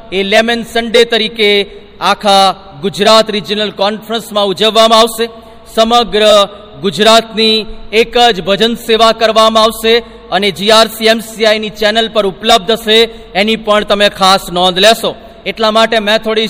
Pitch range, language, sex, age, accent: 205-225 Hz, Gujarati, male, 40-59, native